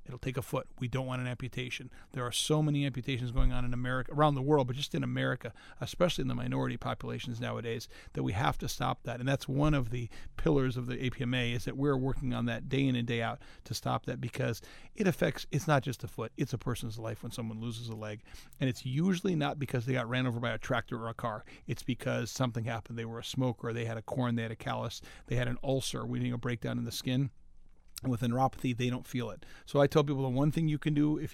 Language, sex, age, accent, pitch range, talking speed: English, male, 40-59, American, 120-140 Hz, 260 wpm